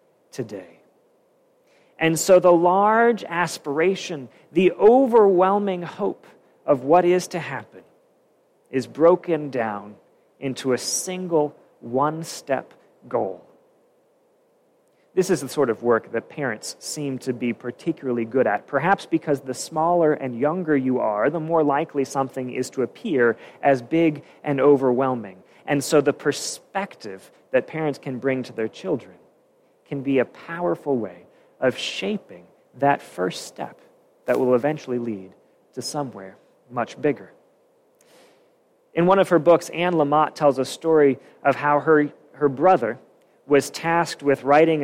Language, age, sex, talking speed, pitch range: English, 40-59, male, 140 wpm, 135-185 Hz